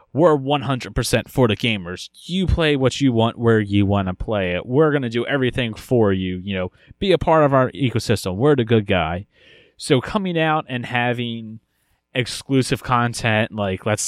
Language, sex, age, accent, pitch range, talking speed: English, male, 30-49, American, 100-130 Hz, 190 wpm